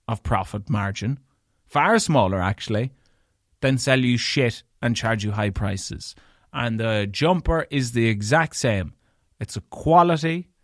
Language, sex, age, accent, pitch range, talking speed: English, male, 30-49, Irish, 105-145 Hz, 140 wpm